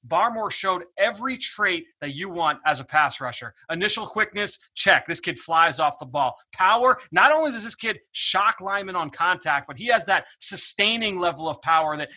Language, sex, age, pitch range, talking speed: English, male, 30-49, 160-195 Hz, 190 wpm